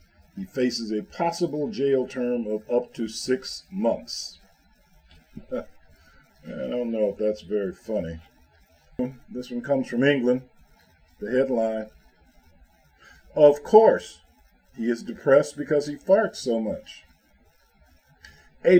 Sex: male